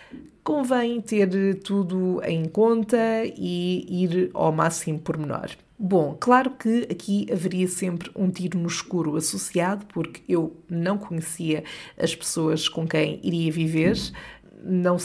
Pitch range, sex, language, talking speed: 165-195 Hz, female, Portuguese, 130 wpm